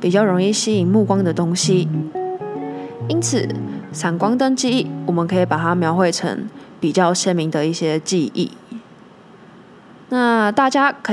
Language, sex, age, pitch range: Chinese, female, 20-39, 175-220 Hz